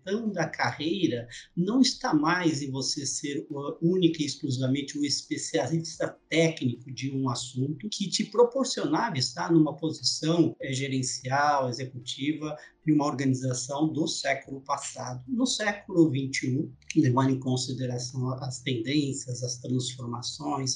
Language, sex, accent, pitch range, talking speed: Portuguese, male, Brazilian, 130-165 Hz, 120 wpm